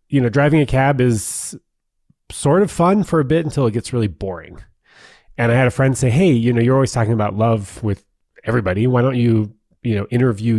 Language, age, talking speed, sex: English, 30-49, 220 wpm, male